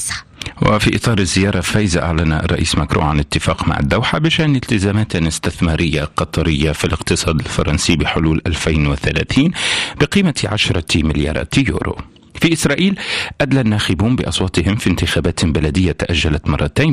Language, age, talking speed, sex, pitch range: Arabic, 40-59, 120 wpm, male, 80-105 Hz